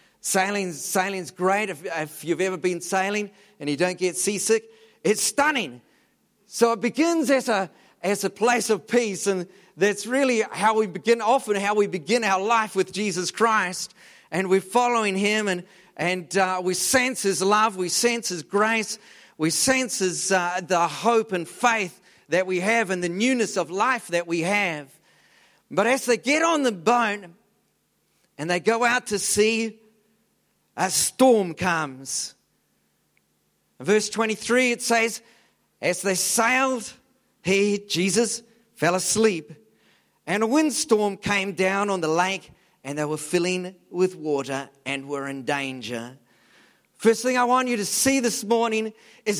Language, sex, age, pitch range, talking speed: English, male, 40-59, 180-230 Hz, 155 wpm